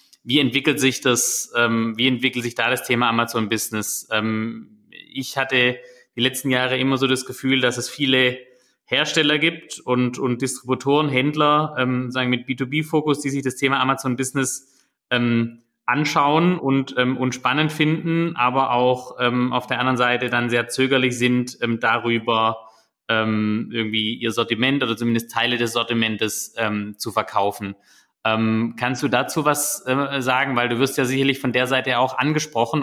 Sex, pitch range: male, 115-135 Hz